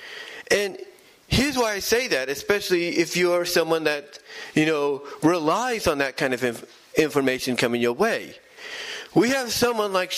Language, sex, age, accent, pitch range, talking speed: English, male, 40-59, American, 150-200 Hz, 160 wpm